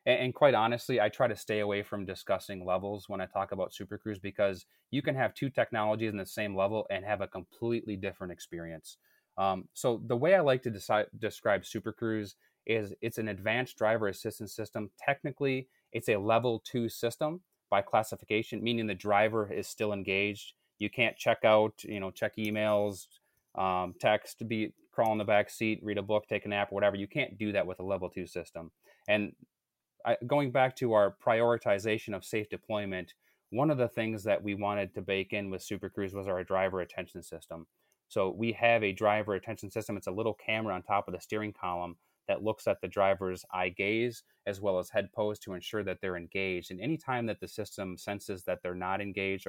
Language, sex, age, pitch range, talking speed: English, male, 30-49, 95-110 Hz, 205 wpm